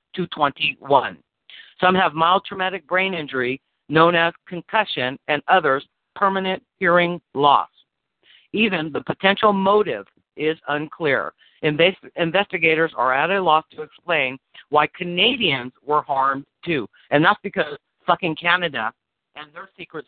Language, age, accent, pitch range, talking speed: English, 50-69, American, 135-180 Hz, 130 wpm